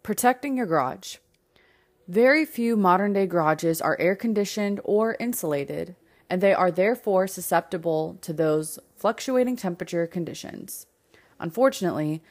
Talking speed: 105 wpm